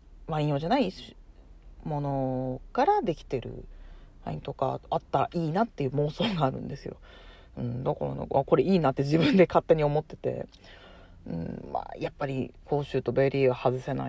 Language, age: Japanese, 40-59